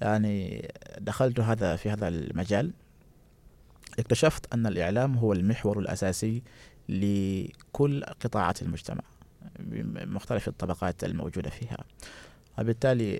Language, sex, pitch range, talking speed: Arabic, male, 95-120 Hz, 90 wpm